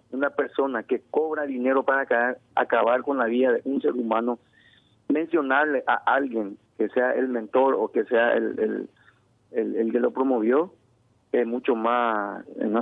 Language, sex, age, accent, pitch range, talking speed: Spanish, male, 40-59, Mexican, 120-135 Hz, 165 wpm